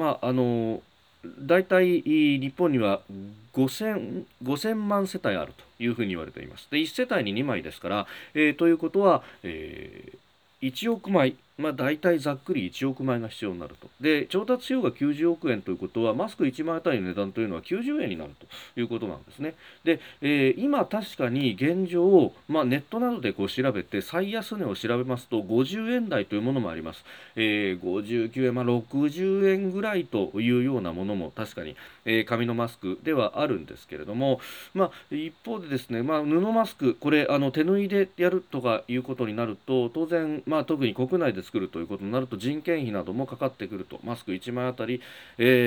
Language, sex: Japanese, male